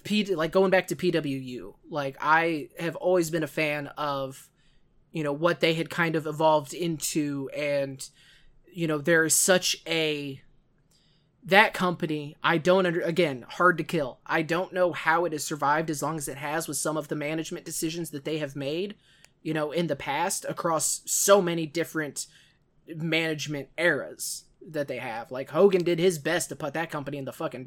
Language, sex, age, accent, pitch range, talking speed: English, male, 20-39, American, 150-175 Hz, 190 wpm